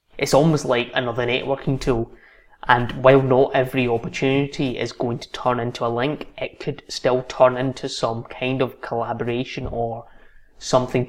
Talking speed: 155 wpm